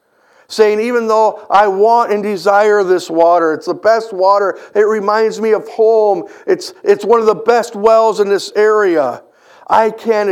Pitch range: 175-225 Hz